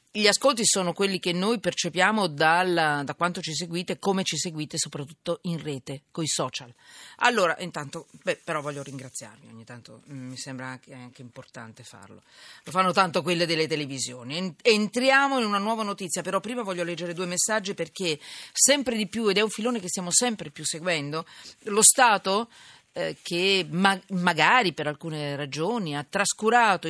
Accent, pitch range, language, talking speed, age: native, 160-220 Hz, Italian, 160 wpm, 40-59